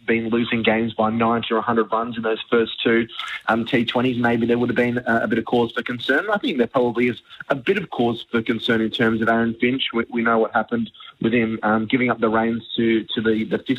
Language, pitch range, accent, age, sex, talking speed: English, 110-120 Hz, Australian, 20-39, male, 250 wpm